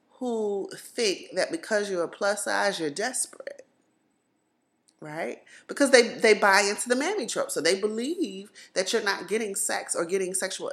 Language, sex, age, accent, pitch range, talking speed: English, female, 30-49, American, 180-250 Hz, 170 wpm